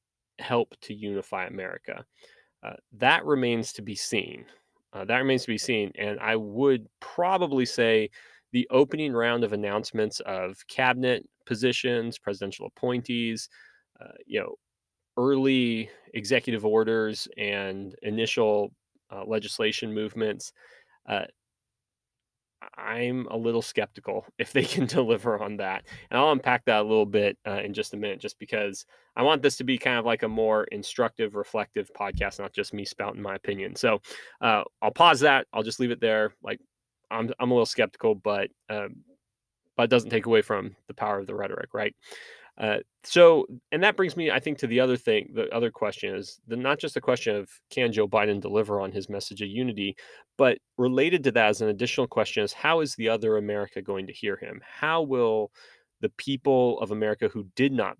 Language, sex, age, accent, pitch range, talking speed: English, male, 20-39, American, 105-130 Hz, 180 wpm